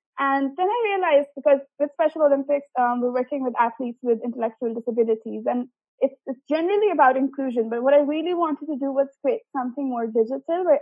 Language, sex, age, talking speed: English, female, 20-39, 195 wpm